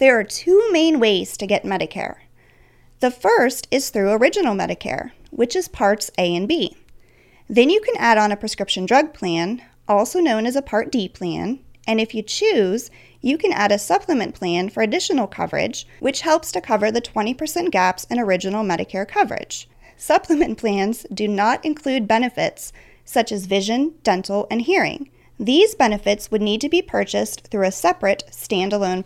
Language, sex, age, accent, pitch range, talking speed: English, female, 30-49, American, 195-290 Hz, 170 wpm